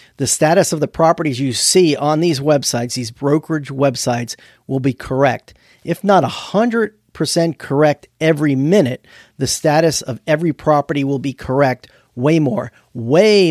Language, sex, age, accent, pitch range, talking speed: English, male, 40-59, American, 125-155 Hz, 145 wpm